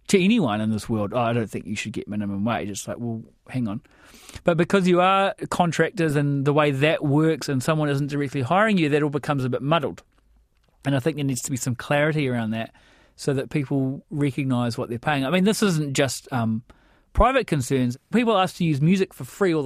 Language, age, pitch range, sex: English, 30-49, 135-190 Hz, male